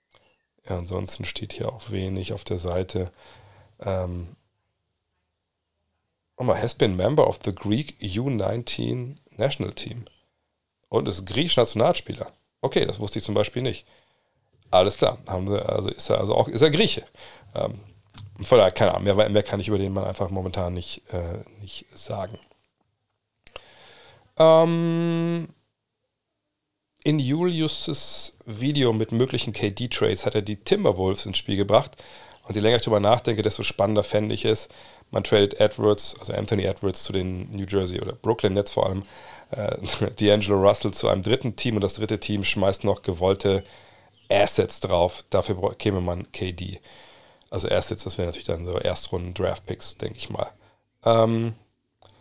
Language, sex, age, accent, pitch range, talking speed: German, male, 40-59, German, 95-110 Hz, 150 wpm